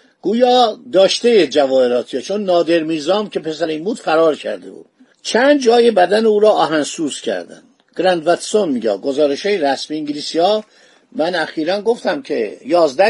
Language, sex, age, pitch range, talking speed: Persian, male, 50-69, 165-230 Hz, 145 wpm